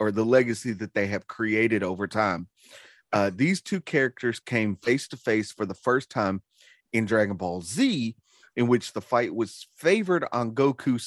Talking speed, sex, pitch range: 180 wpm, male, 100-125 Hz